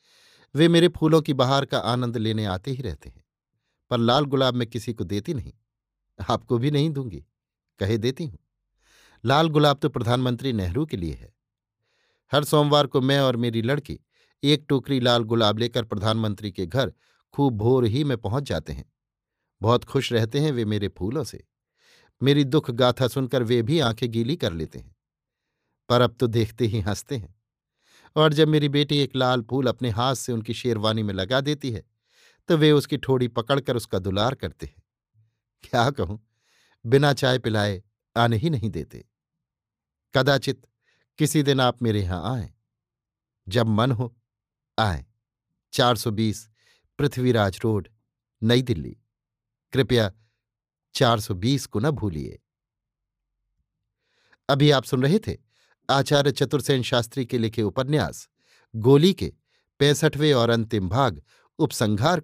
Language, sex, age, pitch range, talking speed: Hindi, male, 50-69, 110-140 Hz, 150 wpm